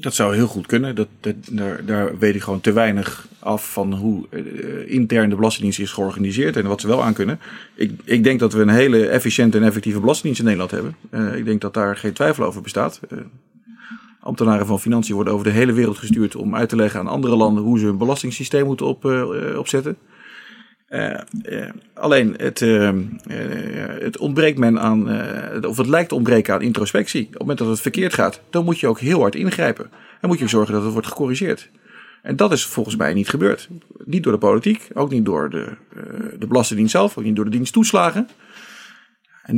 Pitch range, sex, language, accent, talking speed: 105-150 Hz, male, Dutch, Dutch, 210 wpm